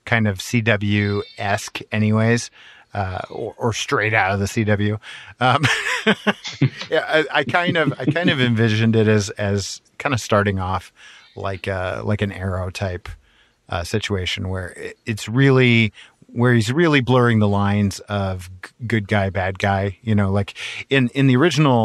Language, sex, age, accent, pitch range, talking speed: English, male, 40-59, American, 100-115 Hz, 160 wpm